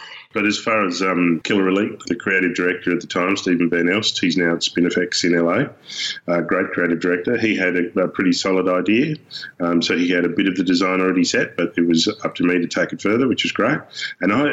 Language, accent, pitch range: English, Australian, 85-95 Hz